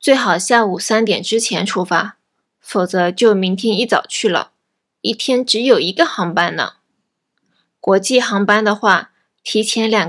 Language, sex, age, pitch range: Japanese, female, 20-39, 200-235 Hz